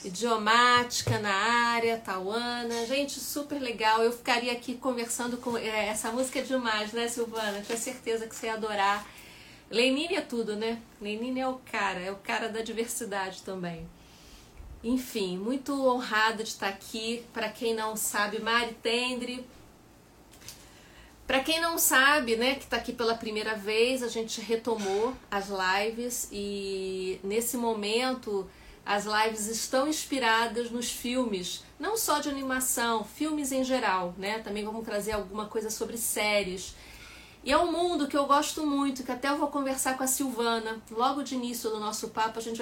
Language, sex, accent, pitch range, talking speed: Portuguese, female, Brazilian, 215-255 Hz, 160 wpm